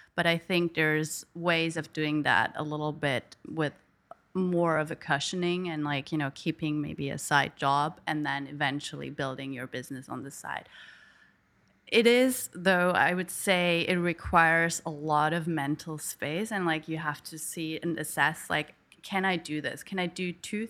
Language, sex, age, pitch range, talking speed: English, female, 30-49, 150-180 Hz, 185 wpm